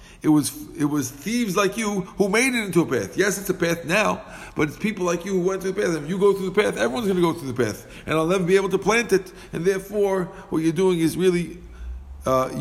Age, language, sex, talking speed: 50-69, English, male, 270 wpm